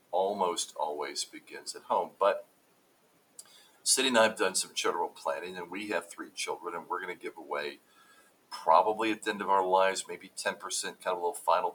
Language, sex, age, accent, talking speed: English, male, 50-69, American, 195 wpm